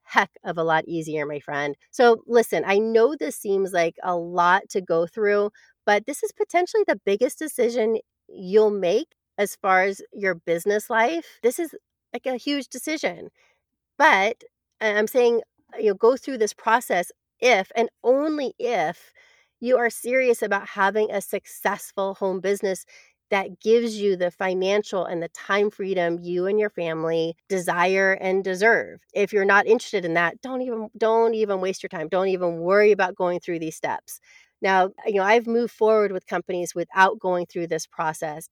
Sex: female